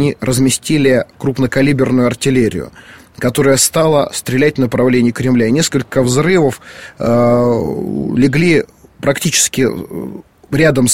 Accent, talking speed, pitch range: native, 80 wpm, 120-150 Hz